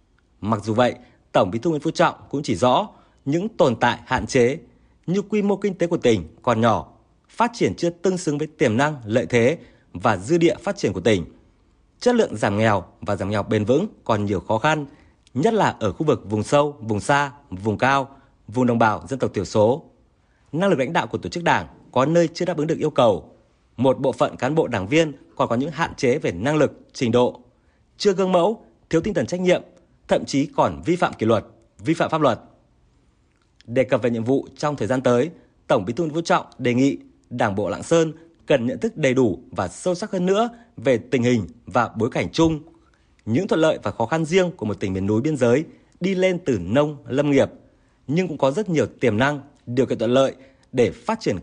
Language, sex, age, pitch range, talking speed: Vietnamese, male, 30-49, 120-165 Hz, 230 wpm